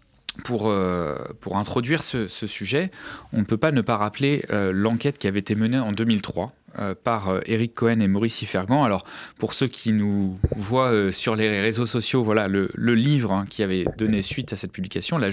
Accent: French